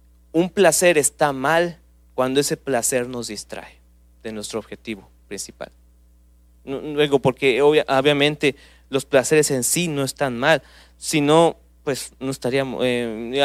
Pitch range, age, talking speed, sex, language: 105-155 Hz, 30-49, 125 wpm, male, English